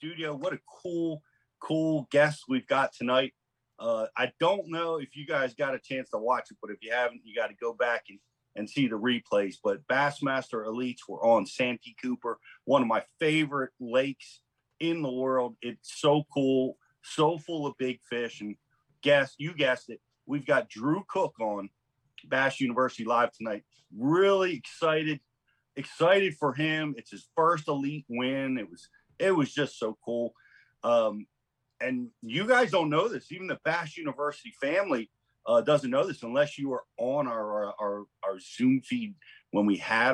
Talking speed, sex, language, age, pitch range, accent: 175 wpm, male, English, 40-59, 120-165 Hz, American